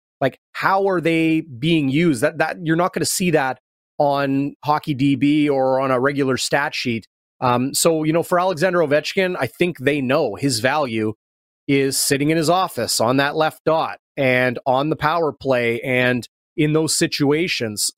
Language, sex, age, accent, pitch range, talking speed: English, male, 30-49, American, 135-165 Hz, 180 wpm